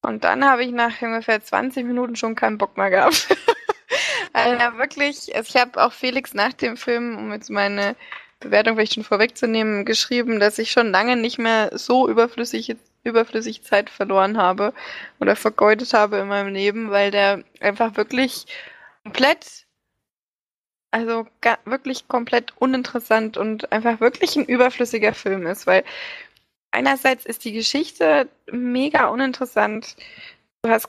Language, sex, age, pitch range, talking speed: German, female, 20-39, 220-265 Hz, 145 wpm